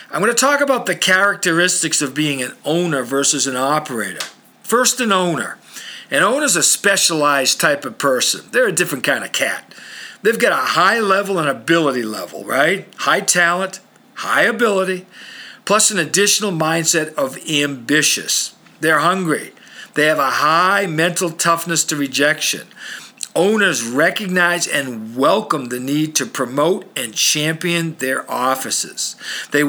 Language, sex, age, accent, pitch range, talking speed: English, male, 50-69, American, 145-185 Hz, 150 wpm